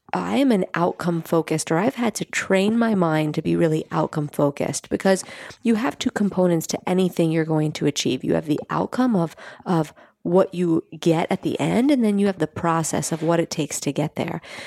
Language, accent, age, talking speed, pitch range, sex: English, American, 30-49, 215 wpm, 160-190 Hz, female